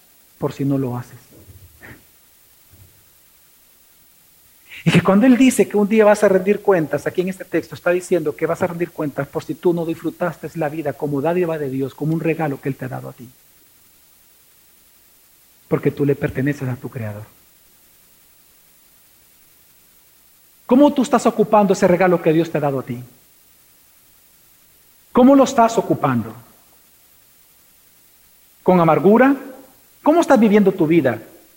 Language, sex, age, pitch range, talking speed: Spanish, male, 50-69, 160-250 Hz, 150 wpm